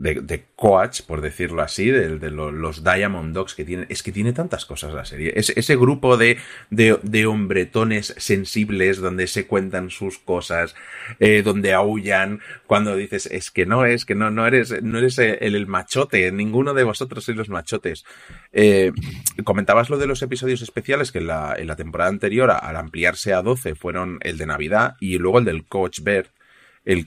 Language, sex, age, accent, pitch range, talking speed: Spanish, male, 30-49, Spanish, 90-115 Hz, 195 wpm